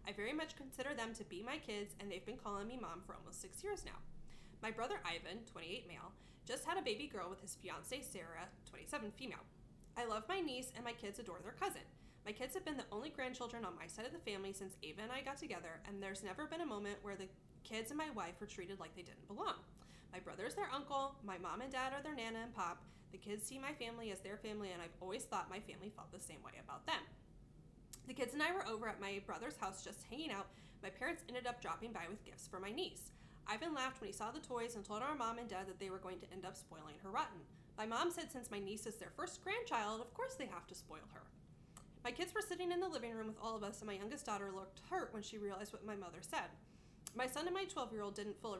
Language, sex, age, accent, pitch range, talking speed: English, female, 20-39, American, 200-270 Hz, 260 wpm